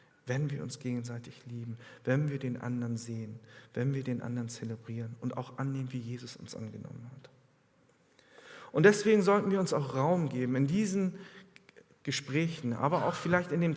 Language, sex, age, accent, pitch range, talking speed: German, male, 50-69, German, 125-165 Hz, 170 wpm